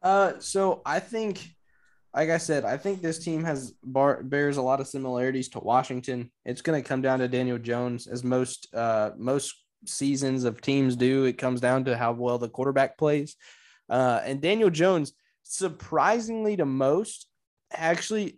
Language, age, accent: English, 20-39, American